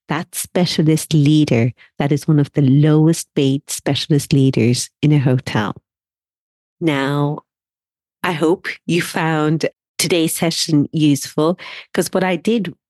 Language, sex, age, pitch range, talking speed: English, female, 40-59, 135-160 Hz, 120 wpm